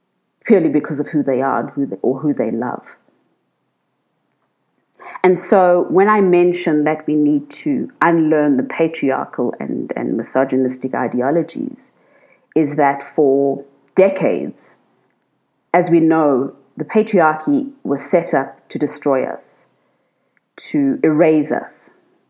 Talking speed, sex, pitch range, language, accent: 125 wpm, female, 145-195 Hz, English, South African